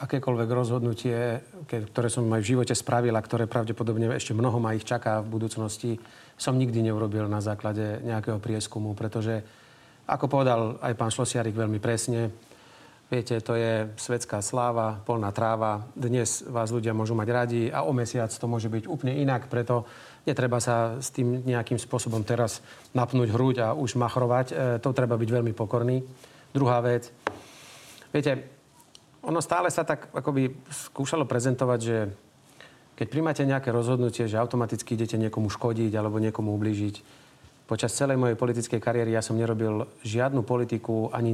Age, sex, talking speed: 40-59, male, 155 wpm